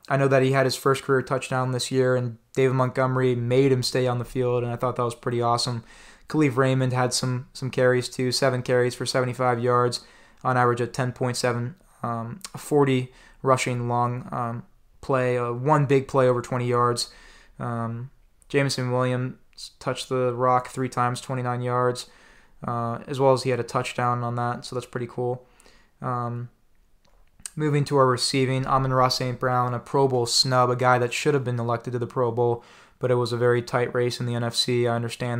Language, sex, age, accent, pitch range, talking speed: English, male, 20-39, American, 120-130 Hz, 200 wpm